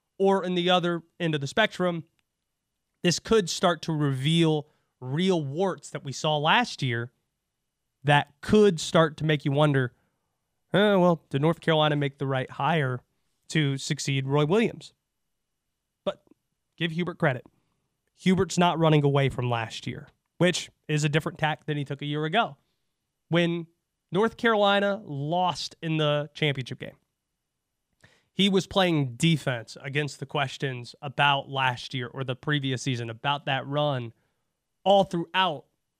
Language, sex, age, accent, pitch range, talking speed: English, male, 30-49, American, 130-170 Hz, 145 wpm